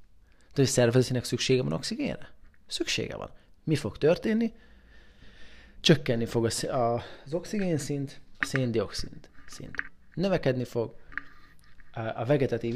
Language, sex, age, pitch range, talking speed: Hungarian, male, 30-49, 110-140 Hz, 120 wpm